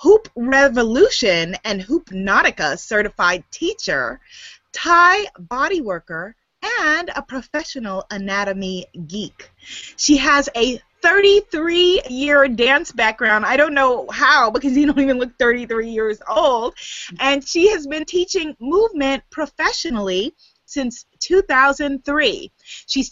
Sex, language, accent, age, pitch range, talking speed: female, English, American, 20-39, 195-305 Hz, 115 wpm